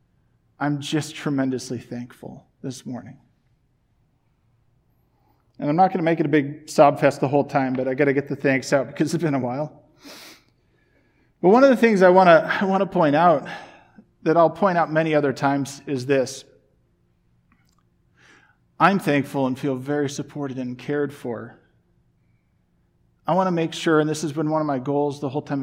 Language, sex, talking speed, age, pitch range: English, male, 175 wpm, 40-59, 135-175 Hz